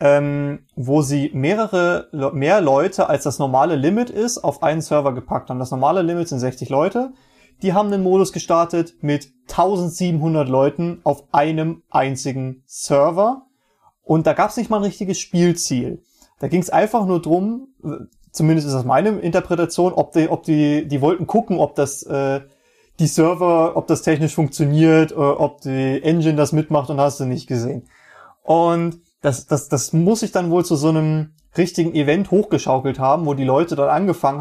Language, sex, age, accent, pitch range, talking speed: German, male, 30-49, German, 140-180 Hz, 175 wpm